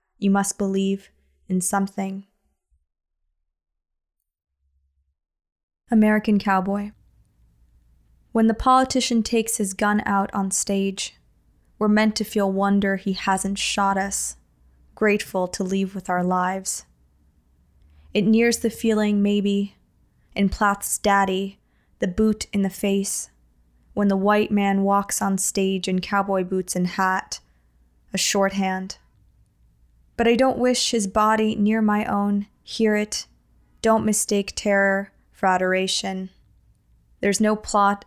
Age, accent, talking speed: 20-39, American, 120 wpm